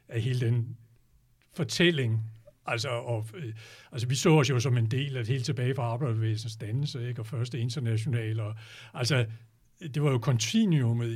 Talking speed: 165 wpm